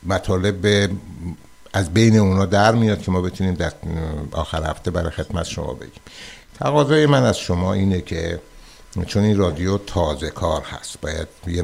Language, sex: Persian, male